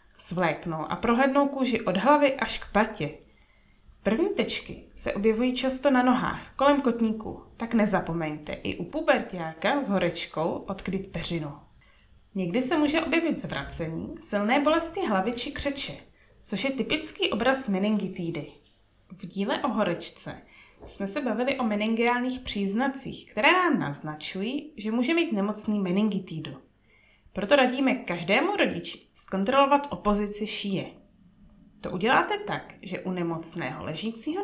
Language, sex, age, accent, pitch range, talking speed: Czech, female, 20-39, native, 180-265 Hz, 130 wpm